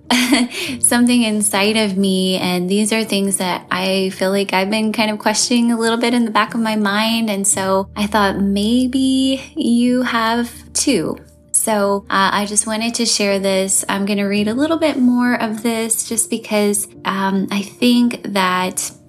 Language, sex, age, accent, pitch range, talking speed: English, female, 20-39, American, 180-220 Hz, 180 wpm